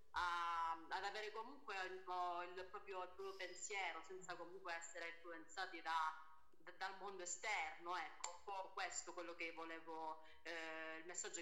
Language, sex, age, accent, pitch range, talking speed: Italian, female, 30-49, native, 160-190 Hz, 145 wpm